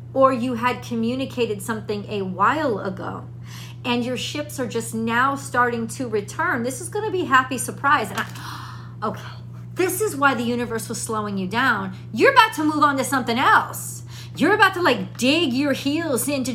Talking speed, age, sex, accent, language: 190 wpm, 40-59, female, American, English